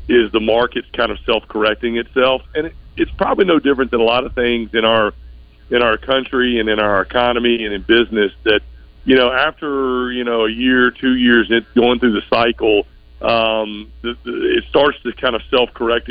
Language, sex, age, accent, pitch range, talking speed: English, male, 50-69, American, 105-120 Hz, 190 wpm